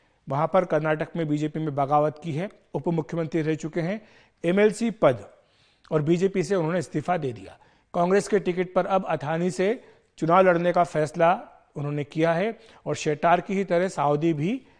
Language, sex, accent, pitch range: Hindi, male, native, 155-185 Hz